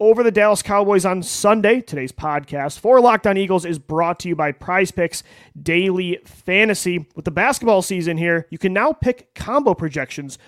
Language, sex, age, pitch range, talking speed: English, male, 30-49, 160-200 Hz, 180 wpm